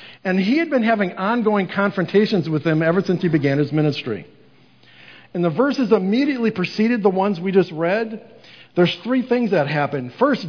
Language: English